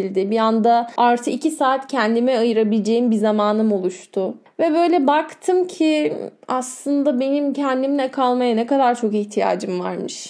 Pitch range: 220-305 Hz